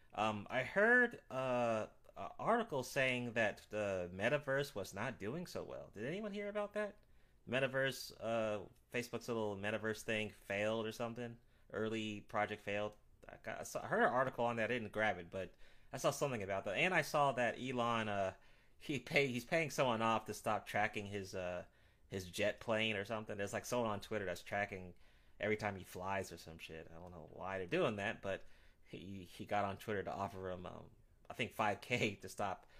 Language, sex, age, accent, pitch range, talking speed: English, male, 30-49, American, 95-120 Hz, 205 wpm